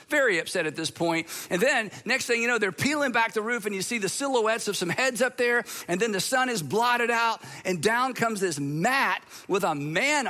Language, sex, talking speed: English, male, 240 wpm